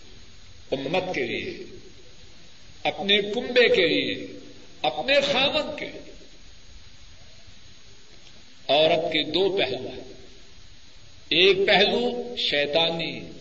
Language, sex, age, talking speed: Urdu, male, 60-79, 85 wpm